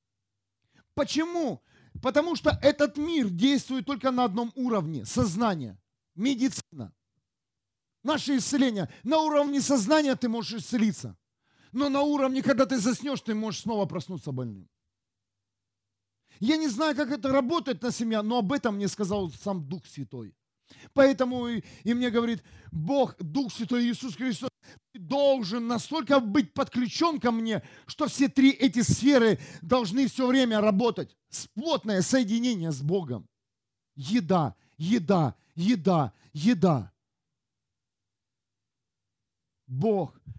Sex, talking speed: male, 120 wpm